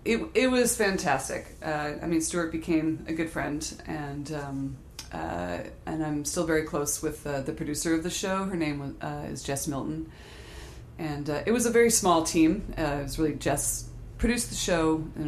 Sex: female